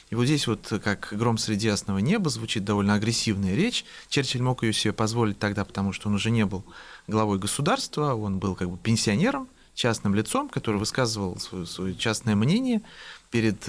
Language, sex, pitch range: Russian, male, 100-130 Hz